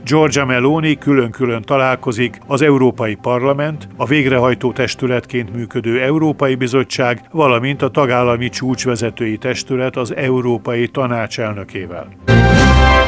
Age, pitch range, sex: 50-69, 120-135 Hz, male